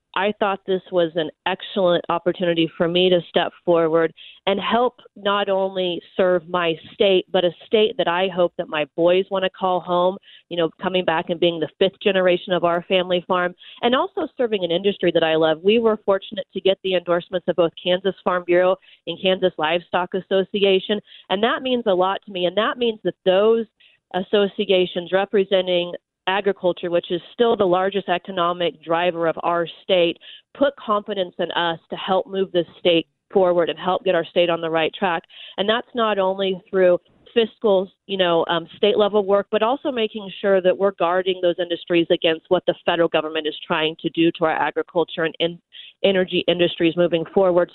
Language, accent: English, American